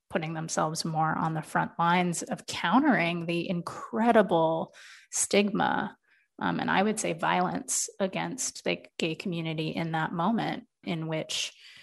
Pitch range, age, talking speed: 165-210 Hz, 30-49, 135 wpm